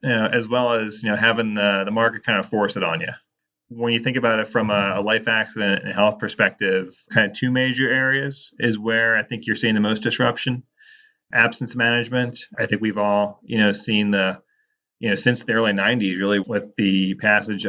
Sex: male